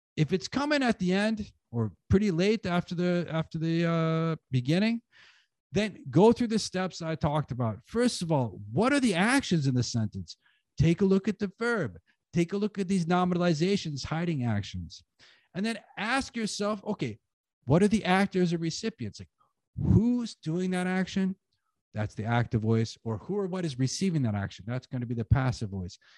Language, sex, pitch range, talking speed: Hungarian, male, 130-195 Hz, 190 wpm